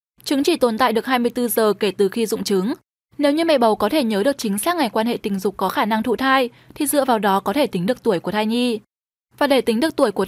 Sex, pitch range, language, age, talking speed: female, 215-280 Hz, Vietnamese, 10-29, 290 wpm